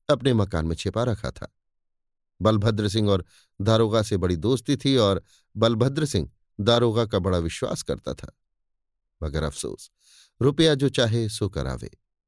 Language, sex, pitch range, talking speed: Hindi, male, 100-130 Hz, 145 wpm